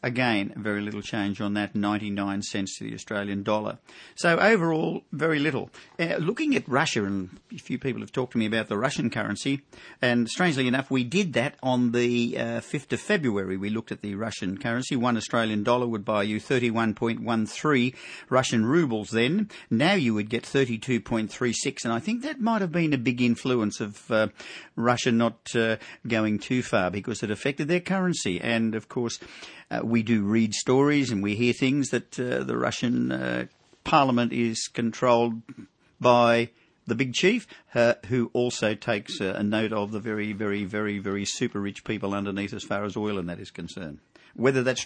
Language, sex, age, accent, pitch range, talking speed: English, male, 50-69, Australian, 105-130 Hz, 185 wpm